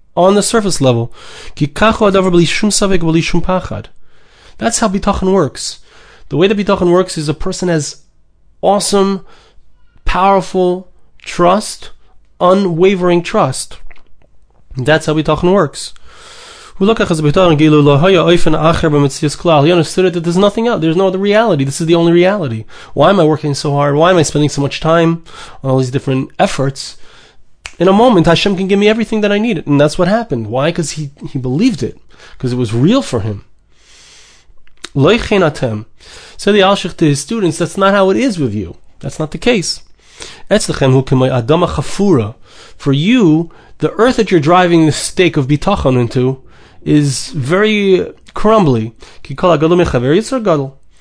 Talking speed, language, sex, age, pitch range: 145 wpm, English, male, 20-39, 140-195 Hz